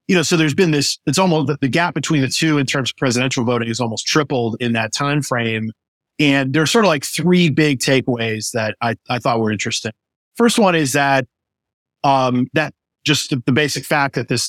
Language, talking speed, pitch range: English, 215 wpm, 120-150 Hz